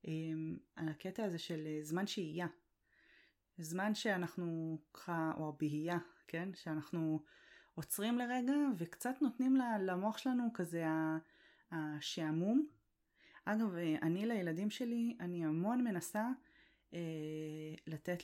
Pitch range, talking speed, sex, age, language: 170-240 Hz, 95 wpm, female, 20-39, Hebrew